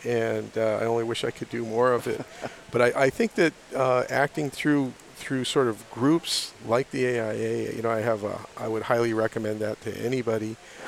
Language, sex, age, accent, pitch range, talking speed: English, male, 50-69, American, 115-135 Hz, 210 wpm